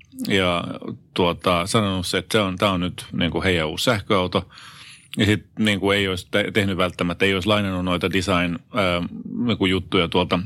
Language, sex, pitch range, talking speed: Finnish, male, 95-115 Hz, 155 wpm